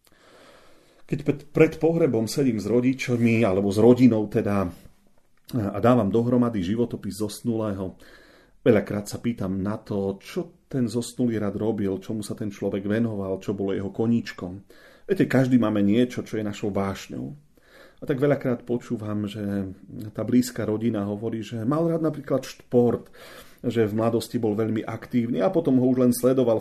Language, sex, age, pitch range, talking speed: Slovak, male, 40-59, 105-125 Hz, 155 wpm